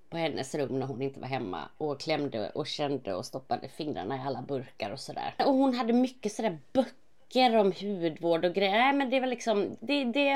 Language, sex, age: Swedish, female, 30-49